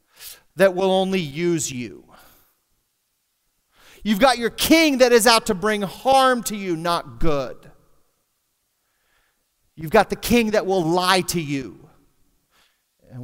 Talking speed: 130 wpm